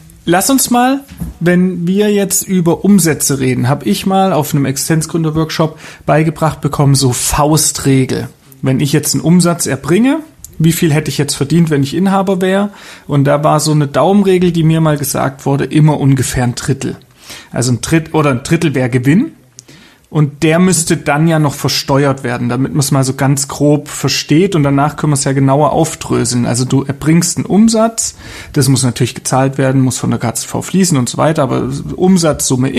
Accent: German